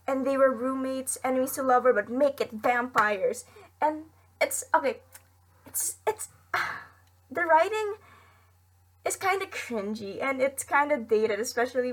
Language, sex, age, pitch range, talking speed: Filipino, female, 20-39, 215-270 Hz, 150 wpm